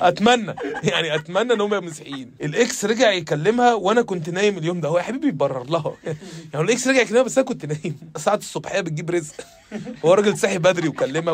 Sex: male